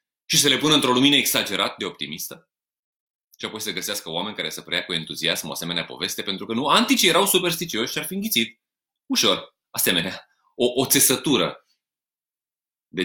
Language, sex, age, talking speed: Romanian, male, 30-49, 170 wpm